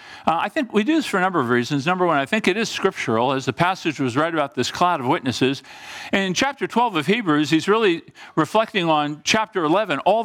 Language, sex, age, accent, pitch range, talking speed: English, male, 50-69, American, 150-215 Hz, 240 wpm